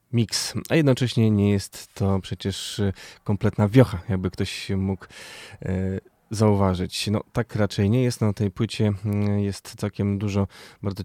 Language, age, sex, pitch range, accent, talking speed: Polish, 20-39, male, 95-110 Hz, native, 140 wpm